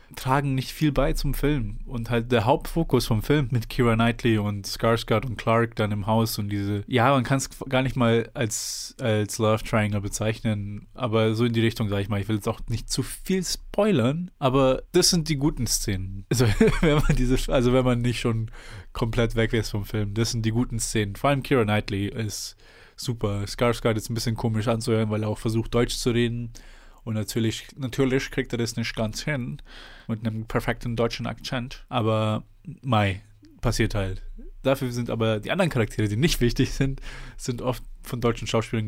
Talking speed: 200 wpm